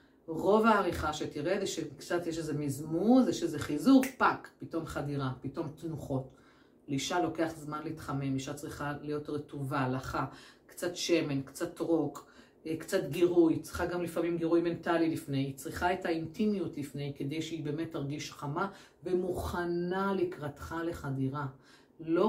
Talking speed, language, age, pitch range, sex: 135 wpm, Hebrew, 50-69, 140-170 Hz, female